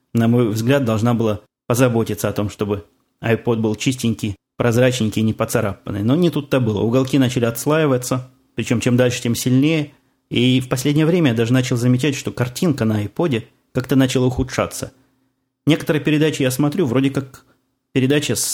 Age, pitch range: 20-39, 115-130 Hz